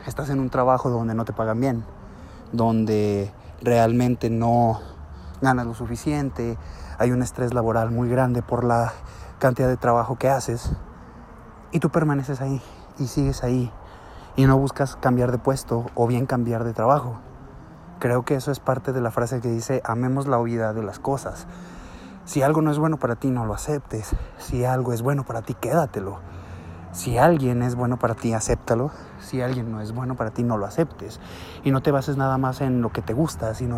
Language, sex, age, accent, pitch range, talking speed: Spanish, male, 20-39, Mexican, 115-135 Hz, 190 wpm